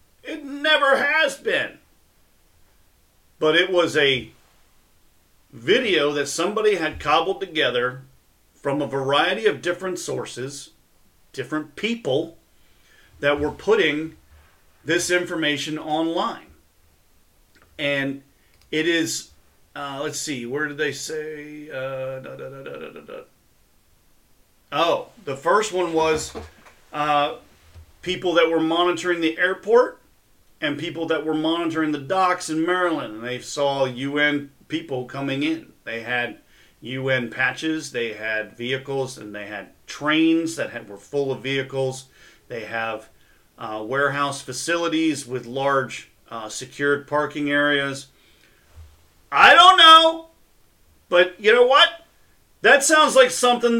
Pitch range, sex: 130-180 Hz, male